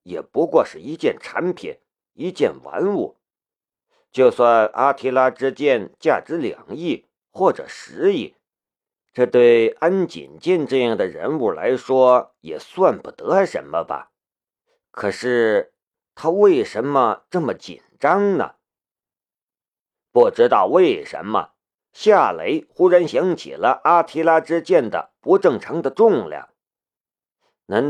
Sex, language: male, Chinese